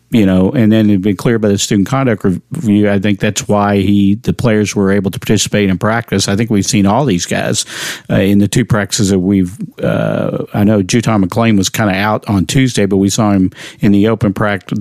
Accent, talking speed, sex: American, 235 wpm, male